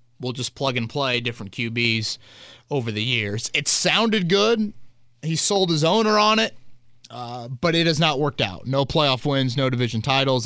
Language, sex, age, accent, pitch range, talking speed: English, male, 30-49, American, 110-130 Hz, 185 wpm